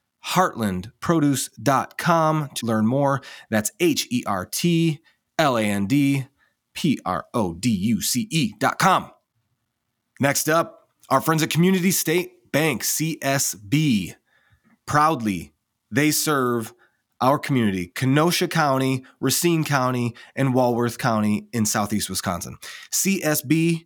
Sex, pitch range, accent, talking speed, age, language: male, 115-160 Hz, American, 115 wpm, 30-49, English